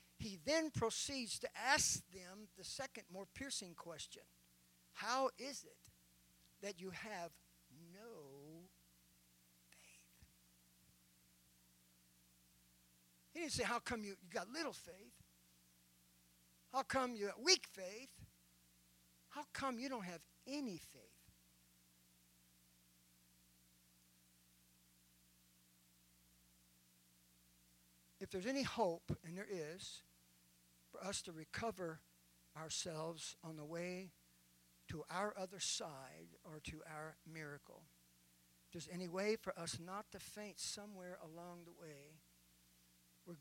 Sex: male